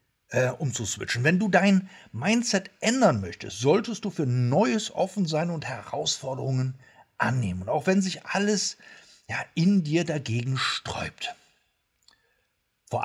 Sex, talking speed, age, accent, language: male, 135 wpm, 60-79, German, German